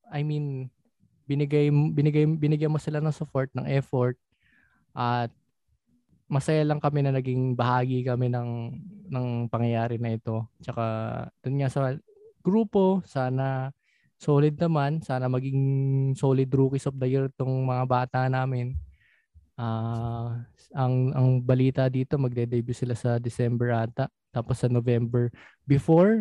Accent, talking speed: native, 125 wpm